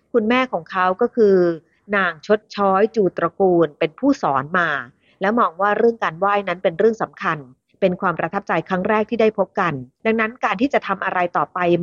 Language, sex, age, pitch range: Thai, female, 30-49, 170-215 Hz